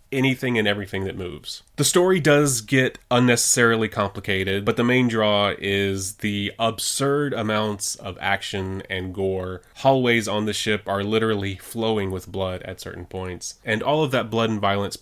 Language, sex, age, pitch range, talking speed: English, male, 20-39, 100-120 Hz, 170 wpm